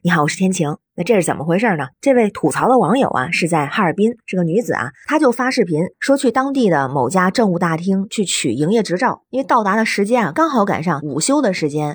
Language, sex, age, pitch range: Chinese, female, 20-39, 170-245 Hz